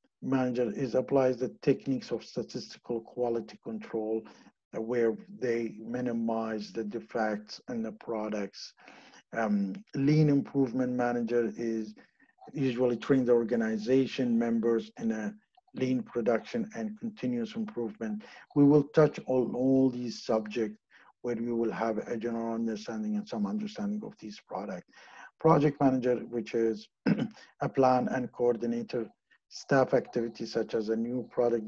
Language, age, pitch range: English, 50-69, 115-140 Hz